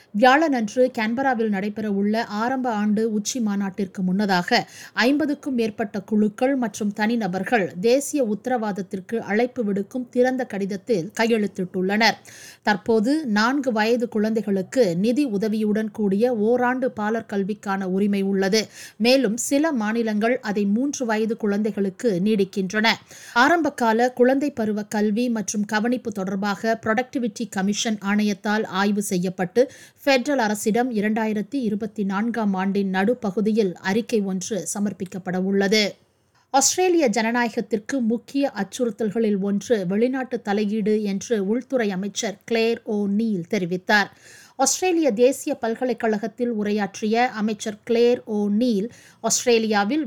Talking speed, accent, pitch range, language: 95 wpm, native, 205-245 Hz, Tamil